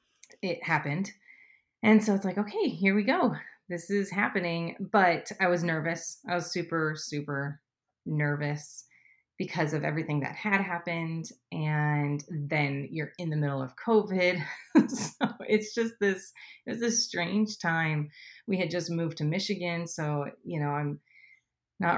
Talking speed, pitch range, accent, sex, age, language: 155 wpm, 150-185 Hz, American, female, 30-49, English